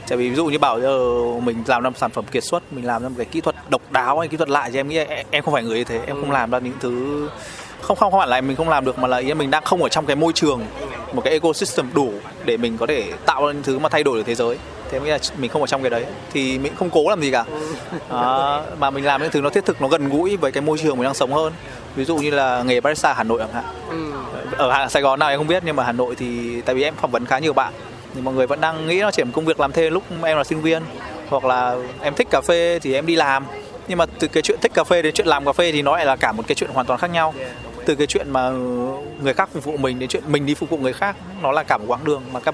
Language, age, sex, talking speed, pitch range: Vietnamese, 20-39, male, 315 wpm, 130-160 Hz